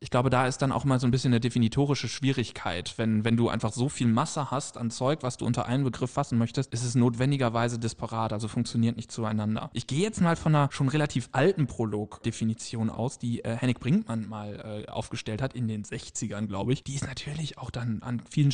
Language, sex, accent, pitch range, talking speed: German, male, German, 115-140 Hz, 225 wpm